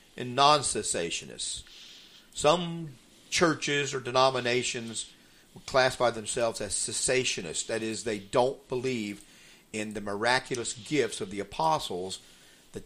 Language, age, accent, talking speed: English, 50-69, American, 105 wpm